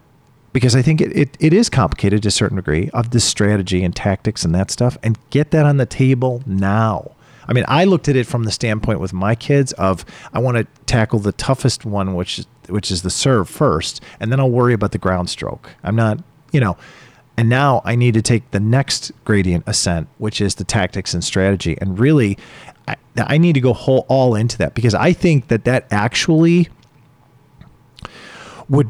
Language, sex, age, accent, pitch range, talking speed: English, male, 40-59, American, 100-135 Hz, 205 wpm